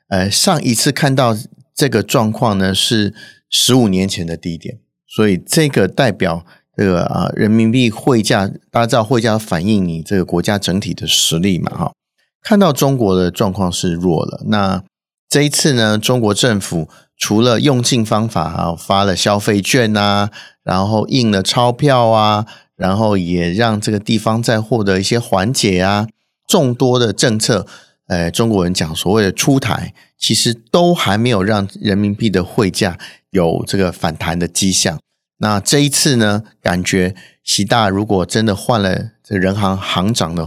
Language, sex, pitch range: Chinese, male, 95-120 Hz